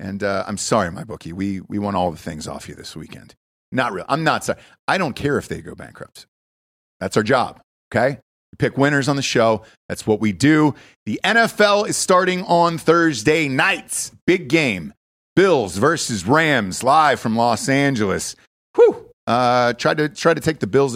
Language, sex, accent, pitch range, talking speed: English, male, American, 110-160 Hz, 190 wpm